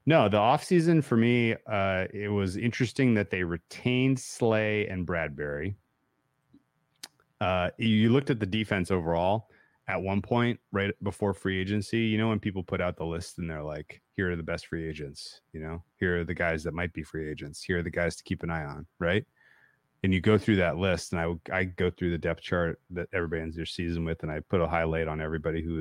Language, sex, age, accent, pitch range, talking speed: English, male, 30-49, American, 85-110 Hz, 220 wpm